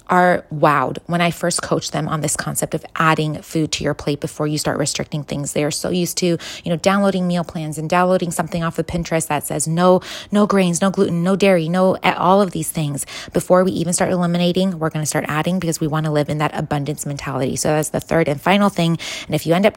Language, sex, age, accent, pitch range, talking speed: English, female, 20-39, American, 155-180 Hz, 250 wpm